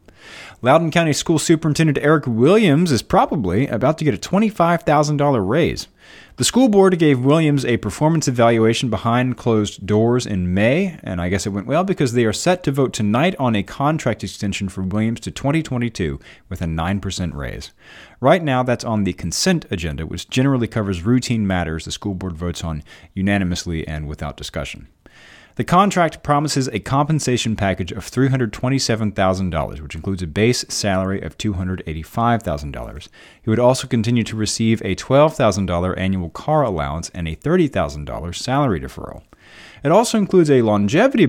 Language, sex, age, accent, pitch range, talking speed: English, male, 30-49, American, 90-135 Hz, 155 wpm